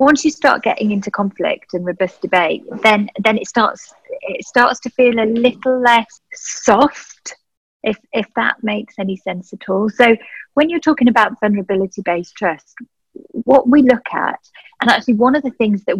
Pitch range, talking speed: 180-225 Hz, 175 wpm